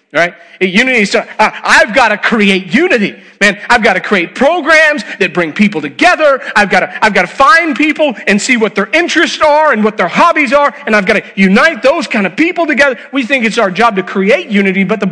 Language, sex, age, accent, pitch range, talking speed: English, male, 40-59, American, 175-220 Hz, 230 wpm